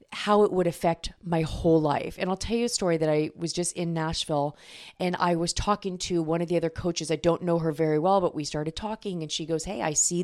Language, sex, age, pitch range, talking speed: English, female, 30-49, 165-195 Hz, 265 wpm